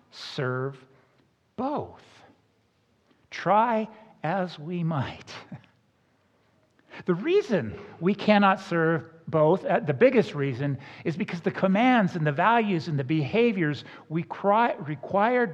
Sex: male